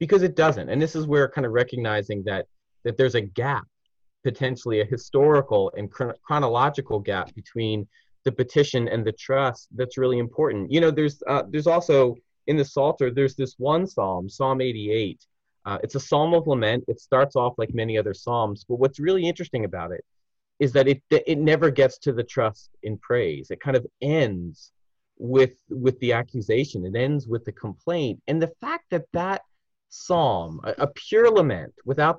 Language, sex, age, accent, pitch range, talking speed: English, male, 30-49, American, 115-155 Hz, 185 wpm